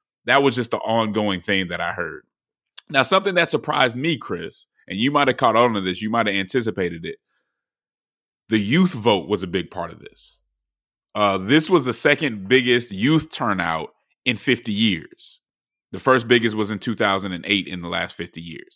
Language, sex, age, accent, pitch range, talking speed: English, male, 30-49, American, 100-125 Hz, 190 wpm